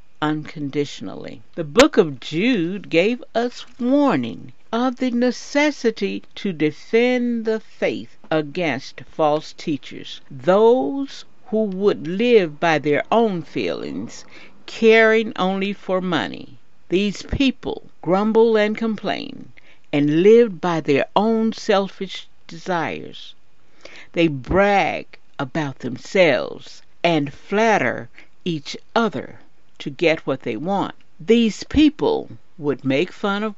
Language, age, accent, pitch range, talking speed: English, 60-79, American, 155-225 Hz, 110 wpm